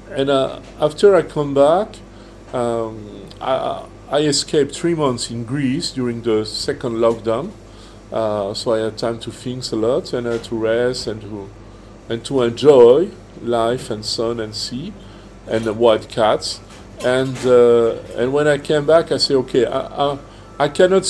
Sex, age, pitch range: male, 50-69, 115-150 Hz